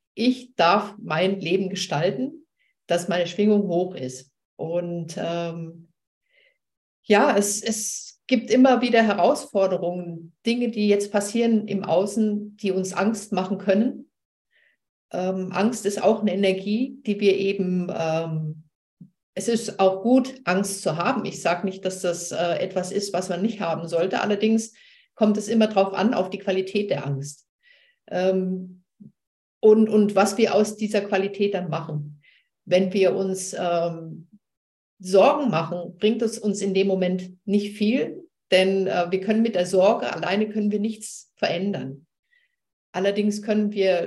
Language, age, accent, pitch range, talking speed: German, 50-69, German, 180-215 Hz, 150 wpm